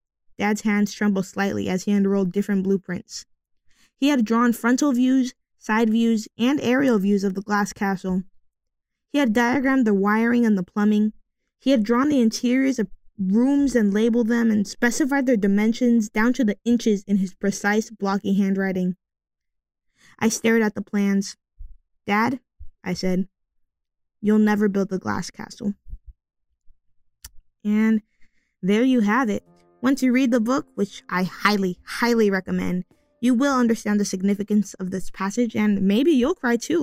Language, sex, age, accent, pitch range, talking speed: English, female, 20-39, American, 195-240 Hz, 155 wpm